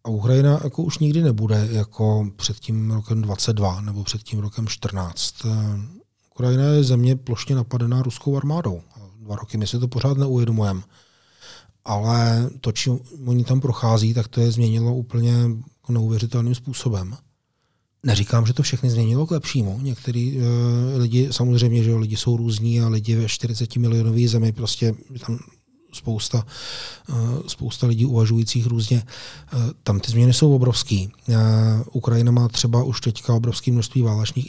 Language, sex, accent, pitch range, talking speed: Czech, male, native, 110-125 Hz, 150 wpm